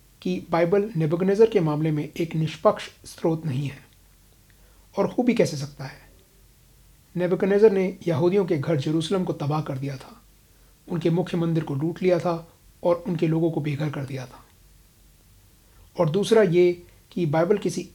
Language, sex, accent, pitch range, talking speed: Hindi, male, native, 140-175 Hz, 160 wpm